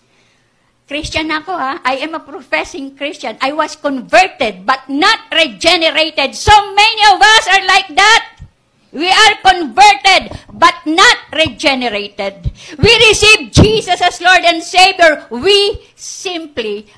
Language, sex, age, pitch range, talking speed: English, female, 50-69, 245-360 Hz, 125 wpm